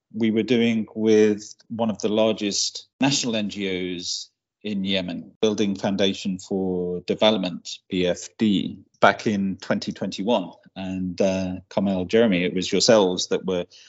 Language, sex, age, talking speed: English, male, 40-59, 125 wpm